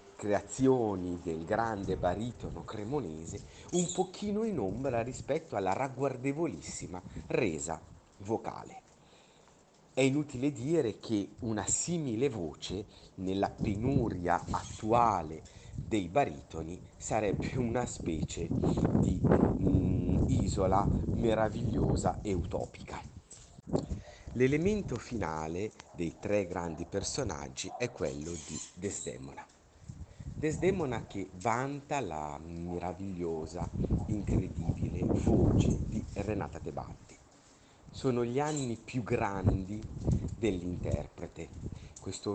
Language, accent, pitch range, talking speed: Italian, native, 90-120 Hz, 90 wpm